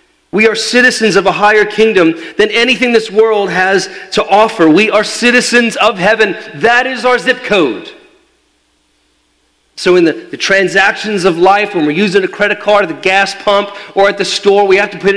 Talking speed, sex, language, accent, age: 195 wpm, male, English, American, 40-59